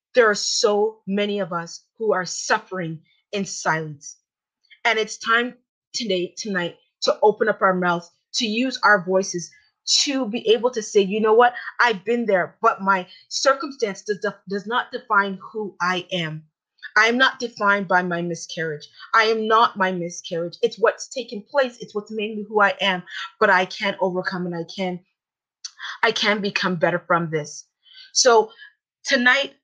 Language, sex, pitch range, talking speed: English, female, 180-230 Hz, 170 wpm